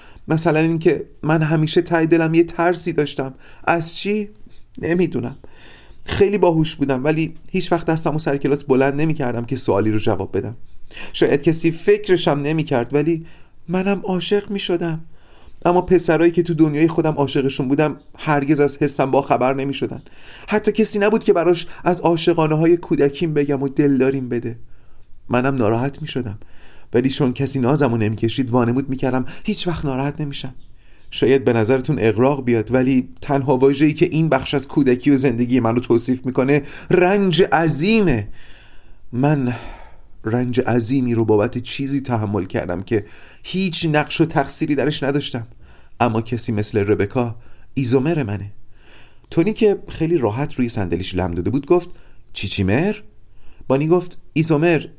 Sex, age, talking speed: male, 30-49, 150 wpm